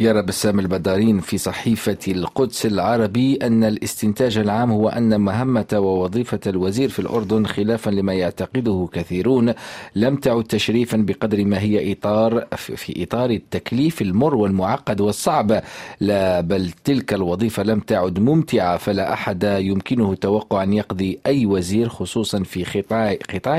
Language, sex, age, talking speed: Arabic, male, 40-59, 130 wpm